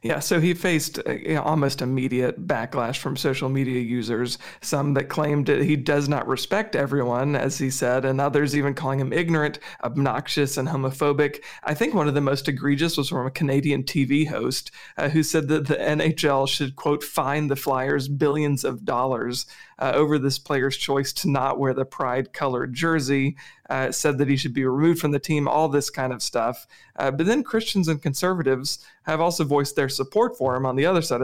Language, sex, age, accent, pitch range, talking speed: English, male, 40-59, American, 130-150 Hz, 200 wpm